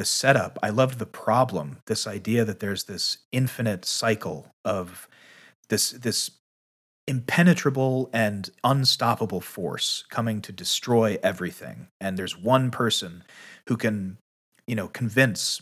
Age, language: 30-49, English